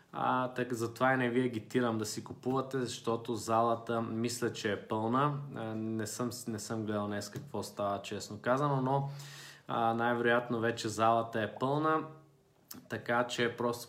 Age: 20-39